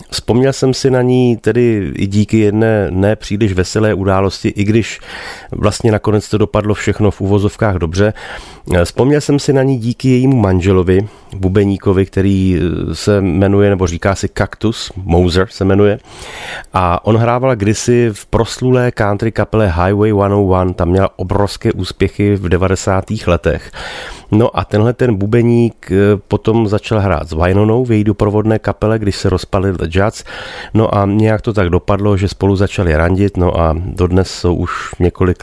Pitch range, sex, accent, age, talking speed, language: 90-105 Hz, male, native, 30-49, 155 wpm, Czech